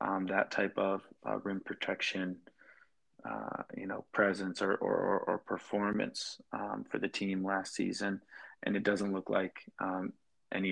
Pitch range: 95-105 Hz